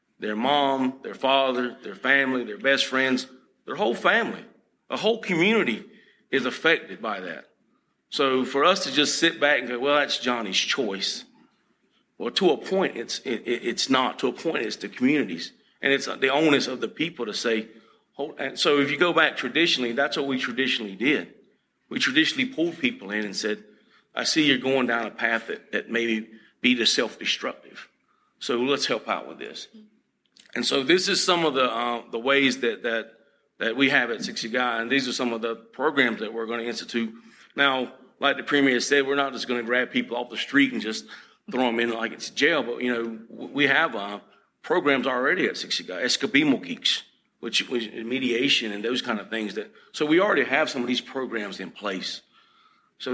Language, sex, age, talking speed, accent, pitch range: English, male, 40-59, 205 wpm, American, 115-140 Hz